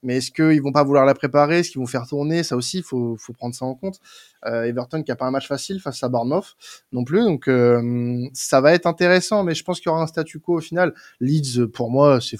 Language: French